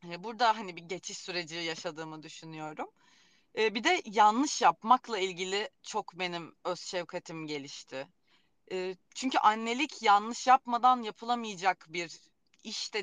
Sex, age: female, 30-49